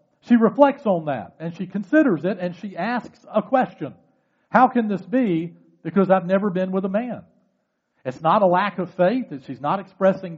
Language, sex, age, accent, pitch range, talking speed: English, male, 50-69, American, 165-230 Hz, 190 wpm